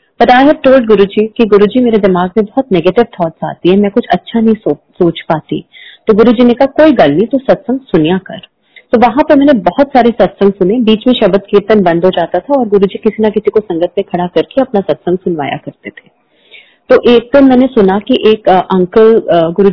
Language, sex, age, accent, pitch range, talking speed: Hindi, female, 30-49, native, 185-225 Hz, 95 wpm